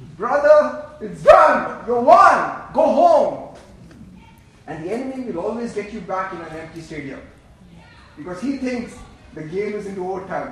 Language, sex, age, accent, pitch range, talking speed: English, male, 30-49, Indian, 160-215 Hz, 155 wpm